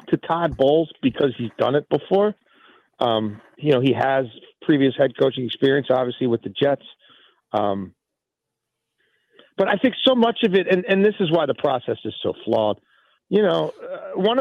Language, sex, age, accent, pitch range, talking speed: English, male, 40-59, American, 140-190 Hz, 180 wpm